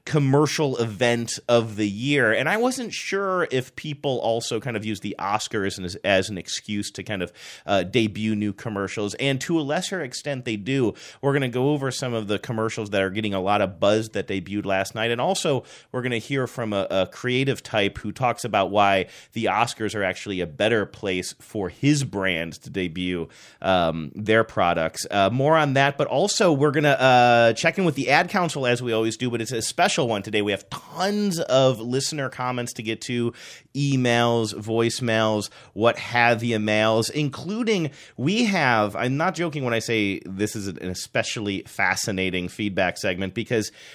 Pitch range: 105-145 Hz